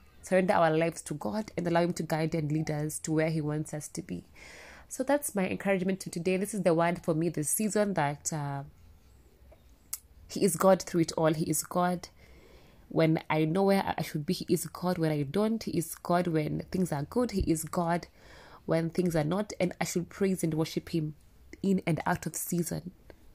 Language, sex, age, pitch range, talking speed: English, female, 20-39, 155-185 Hz, 215 wpm